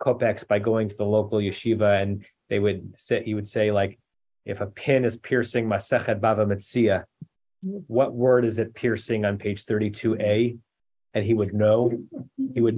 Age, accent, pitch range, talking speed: 30-49, American, 105-130 Hz, 165 wpm